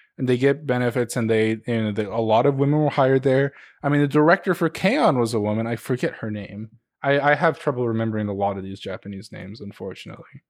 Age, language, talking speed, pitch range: 20-39, English, 235 wpm, 105-145 Hz